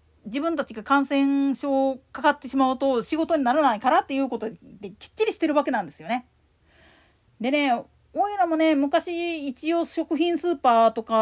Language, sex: Japanese, female